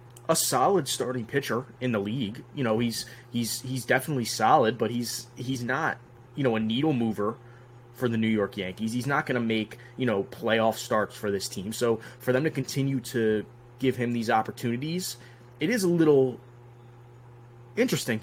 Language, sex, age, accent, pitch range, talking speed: English, male, 20-39, American, 115-130 Hz, 180 wpm